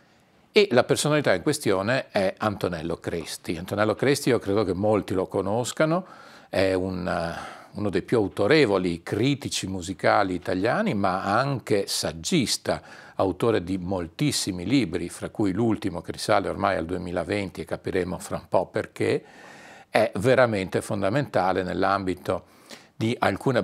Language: Italian